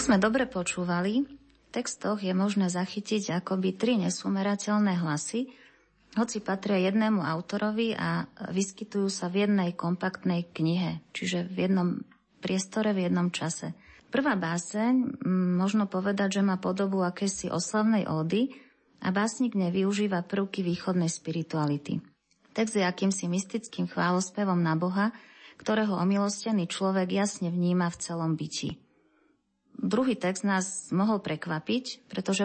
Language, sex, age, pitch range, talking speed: Slovak, female, 30-49, 180-210 Hz, 125 wpm